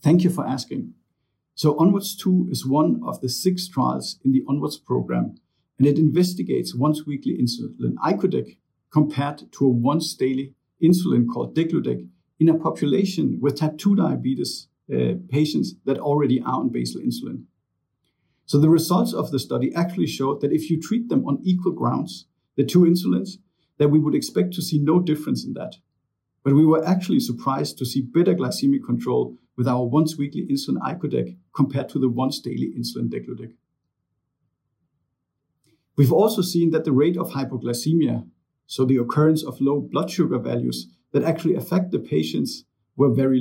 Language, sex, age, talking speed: English, male, 50-69, 165 wpm